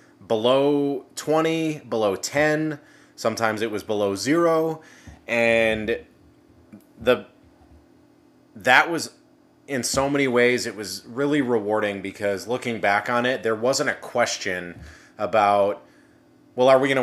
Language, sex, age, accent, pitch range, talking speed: English, male, 20-39, American, 105-130 Hz, 125 wpm